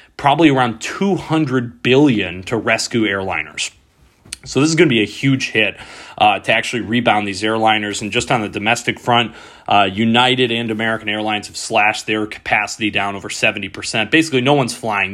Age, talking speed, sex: 30-49, 170 wpm, male